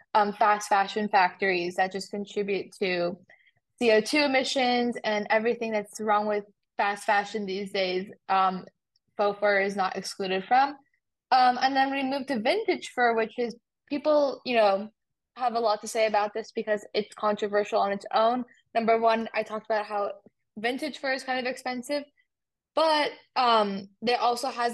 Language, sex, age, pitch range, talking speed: English, female, 10-29, 205-255 Hz, 165 wpm